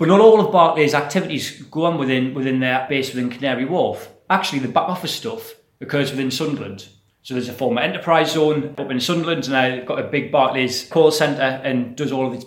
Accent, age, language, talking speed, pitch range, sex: British, 30-49, English, 215 wpm, 125-160 Hz, male